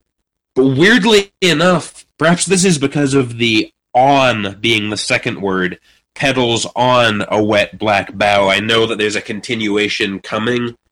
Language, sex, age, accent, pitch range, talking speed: English, male, 30-49, American, 105-125 Hz, 150 wpm